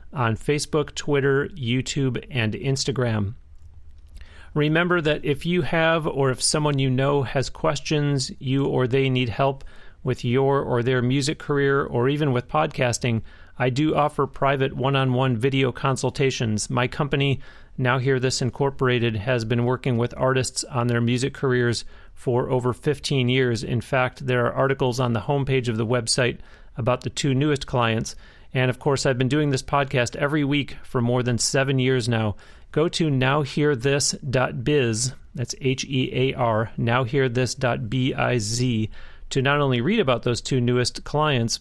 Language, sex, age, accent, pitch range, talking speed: English, male, 40-59, American, 120-140 Hz, 155 wpm